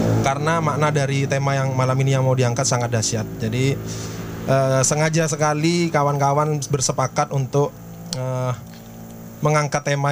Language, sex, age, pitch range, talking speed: Indonesian, male, 20-39, 125-150 Hz, 130 wpm